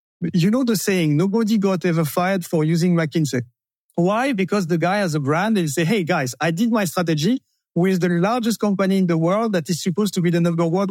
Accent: French